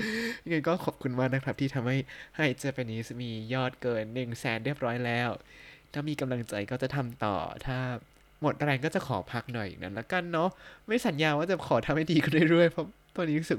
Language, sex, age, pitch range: Thai, male, 20-39, 110-140 Hz